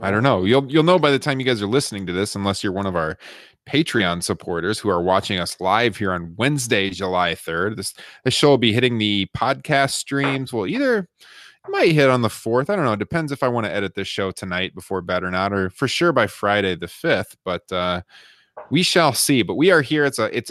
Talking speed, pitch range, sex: 250 wpm, 100-140 Hz, male